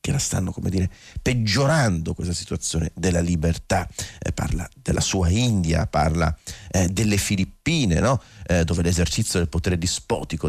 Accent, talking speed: native, 150 wpm